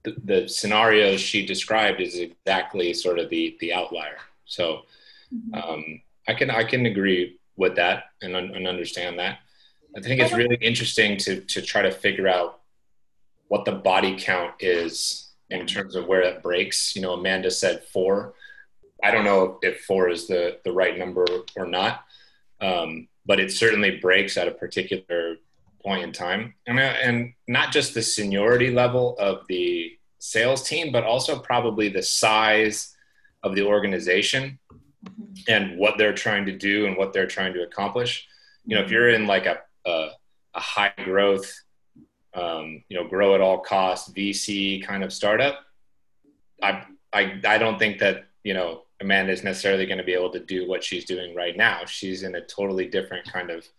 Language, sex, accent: English, male, American